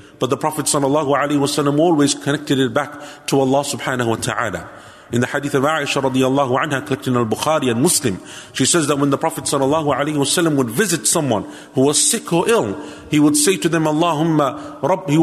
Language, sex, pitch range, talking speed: English, male, 140-170 Hz, 180 wpm